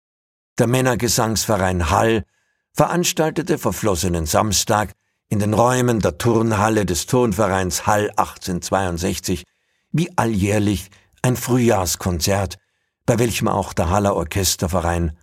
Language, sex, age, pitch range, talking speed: German, male, 60-79, 90-110 Hz, 100 wpm